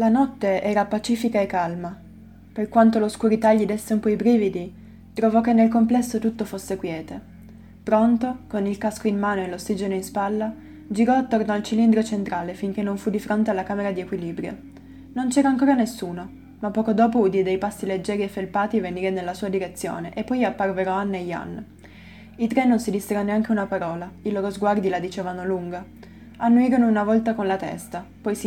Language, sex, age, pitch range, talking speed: Italian, female, 20-39, 190-220 Hz, 190 wpm